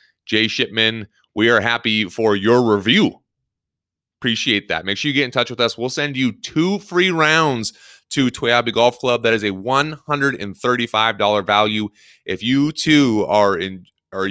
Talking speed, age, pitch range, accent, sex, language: 165 wpm, 30-49, 100-120 Hz, American, male, English